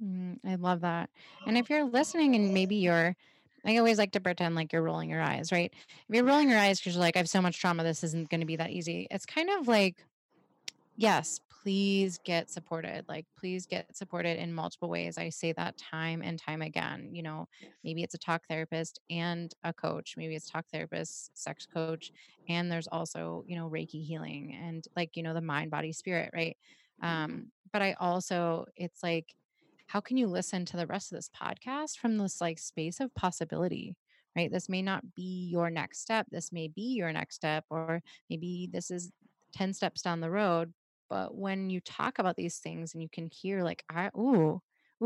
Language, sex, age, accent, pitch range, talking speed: English, female, 20-39, American, 165-195 Hz, 205 wpm